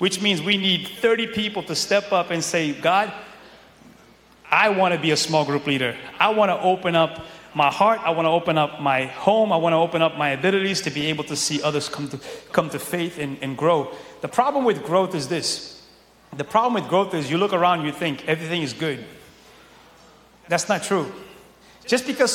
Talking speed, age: 200 wpm, 30-49